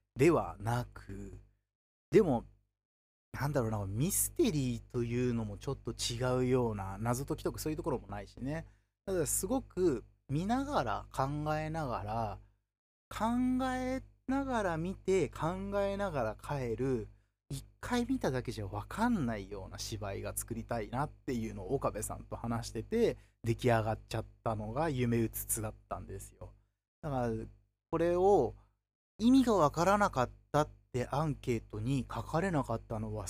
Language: Japanese